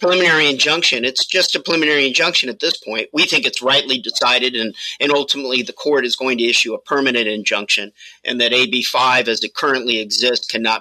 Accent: American